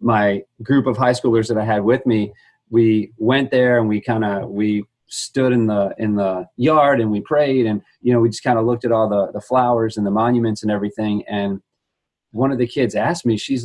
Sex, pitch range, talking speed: male, 110-125 Hz, 235 wpm